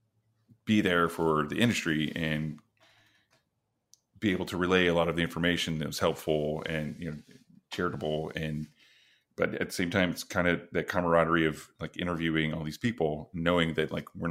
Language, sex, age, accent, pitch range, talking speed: English, male, 30-49, American, 80-90 Hz, 180 wpm